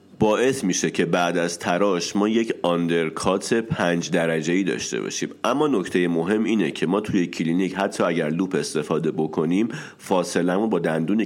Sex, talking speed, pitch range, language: male, 165 wpm, 85-110 Hz, Persian